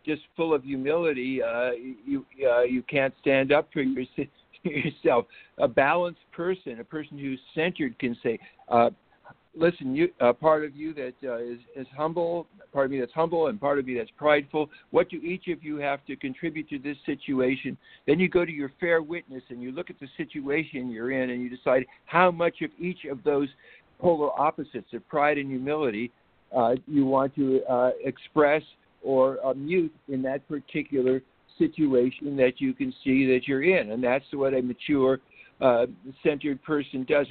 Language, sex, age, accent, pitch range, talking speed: English, male, 60-79, American, 130-160 Hz, 185 wpm